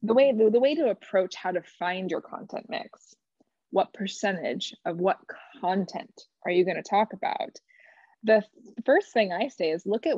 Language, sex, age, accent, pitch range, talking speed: English, female, 20-39, American, 180-225 Hz, 195 wpm